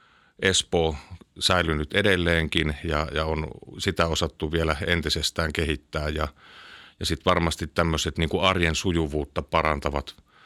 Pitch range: 75-85 Hz